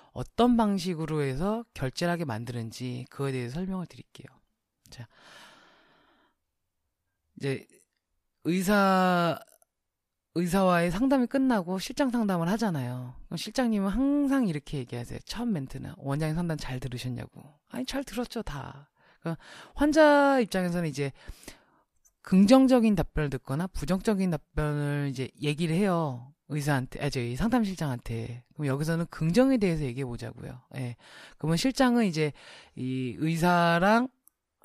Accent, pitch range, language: native, 135-205 Hz, Korean